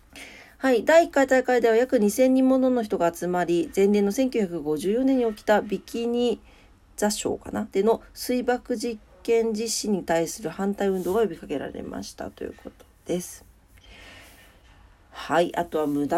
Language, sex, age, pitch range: Japanese, female, 40-59, 140-220 Hz